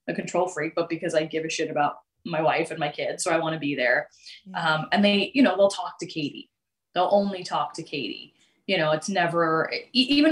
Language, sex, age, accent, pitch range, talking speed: English, female, 20-39, American, 160-205 Hz, 240 wpm